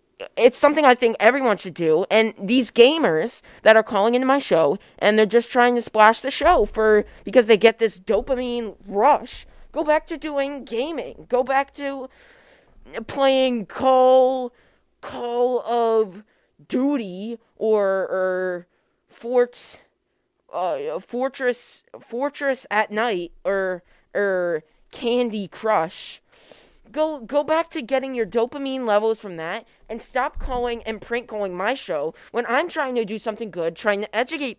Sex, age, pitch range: female, 20-39, 215-290 Hz